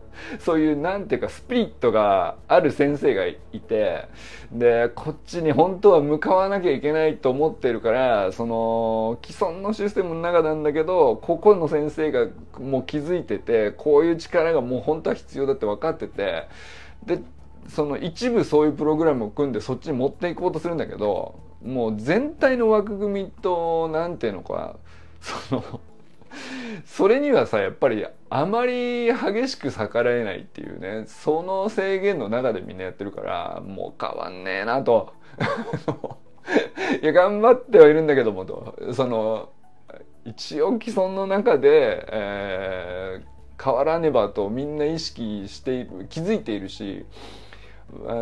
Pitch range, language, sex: 115-185 Hz, Japanese, male